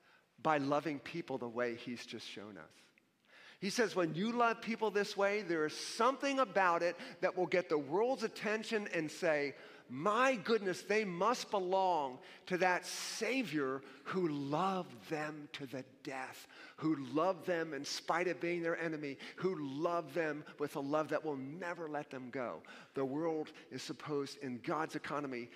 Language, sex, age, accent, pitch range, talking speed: English, male, 40-59, American, 130-175 Hz, 170 wpm